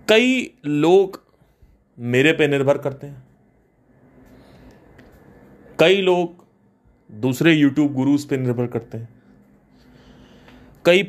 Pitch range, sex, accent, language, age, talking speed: 110-170 Hz, male, native, Hindi, 30-49, 90 wpm